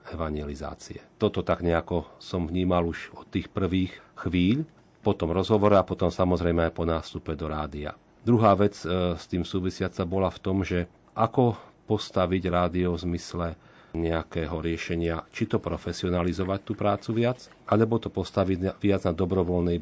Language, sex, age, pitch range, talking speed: Slovak, male, 40-59, 85-100 Hz, 150 wpm